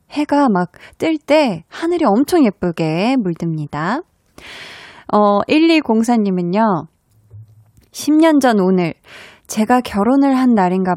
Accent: native